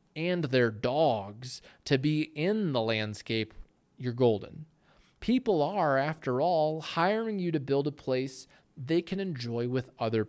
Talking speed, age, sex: 145 wpm, 20-39, male